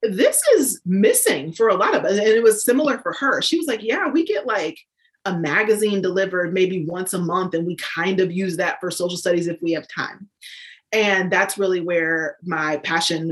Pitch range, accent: 170-215 Hz, American